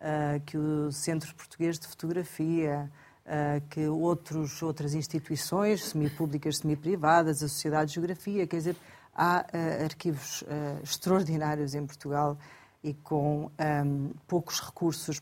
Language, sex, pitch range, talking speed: Portuguese, female, 150-180 Hz, 105 wpm